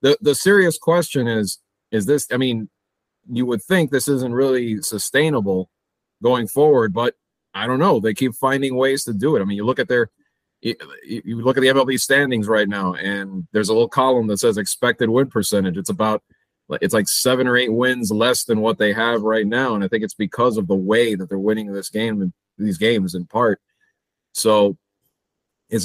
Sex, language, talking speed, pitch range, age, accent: male, English, 200 wpm, 105-130 Hz, 30-49, American